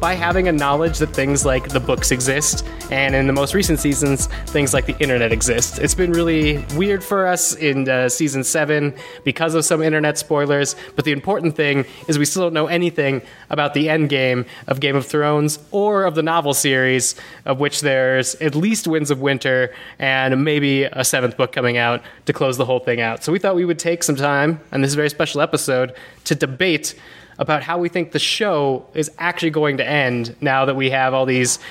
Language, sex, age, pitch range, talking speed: English, male, 20-39, 135-155 Hz, 215 wpm